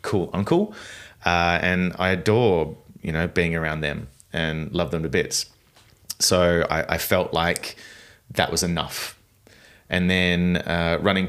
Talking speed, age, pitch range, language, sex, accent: 150 wpm, 30-49, 75-90 Hz, English, male, Australian